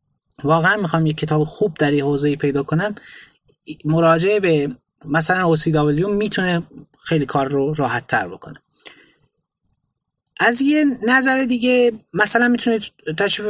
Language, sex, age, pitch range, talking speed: Persian, male, 20-39, 145-190 Hz, 125 wpm